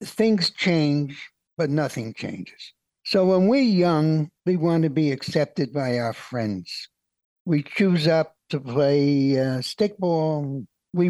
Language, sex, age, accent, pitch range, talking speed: English, male, 60-79, American, 145-180 Hz, 135 wpm